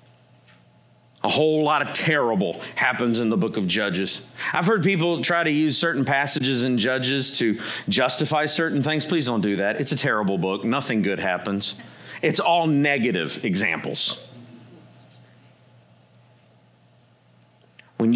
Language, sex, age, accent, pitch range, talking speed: English, male, 40-59, American, 105-150 Hz, 135 wpm